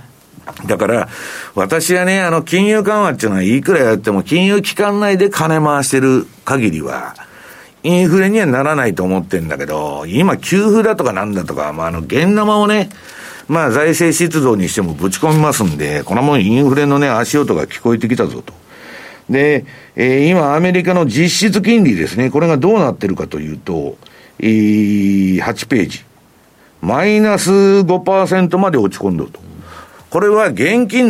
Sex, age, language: male, 50-69, Japanese